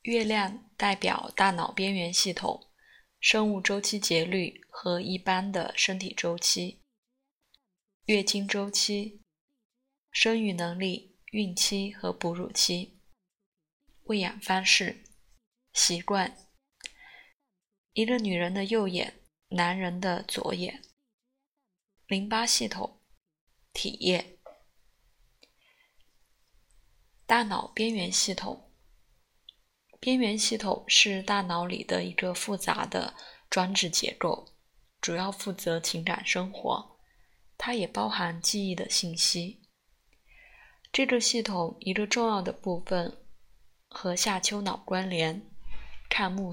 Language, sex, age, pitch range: Chinese, female, 20-39, 180-215 Hz